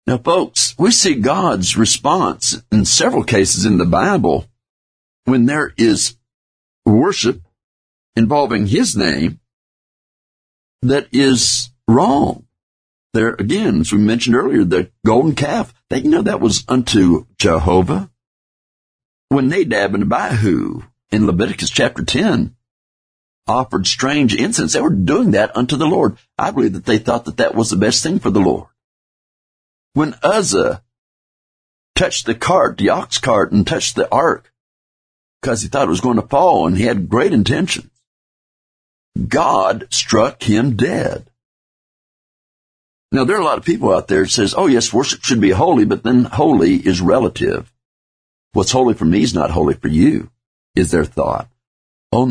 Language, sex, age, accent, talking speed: English, male, 50-69, American, 155 wpm